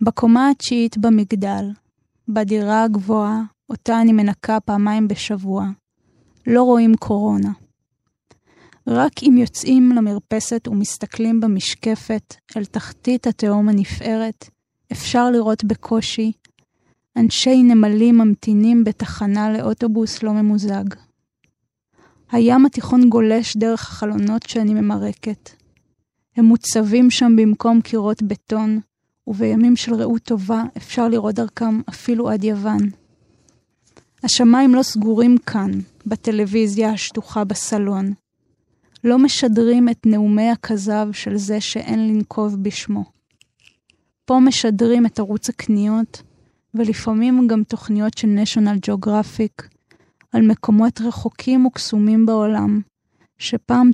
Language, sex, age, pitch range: Hebrew, female, 20-39, 210-230 Hz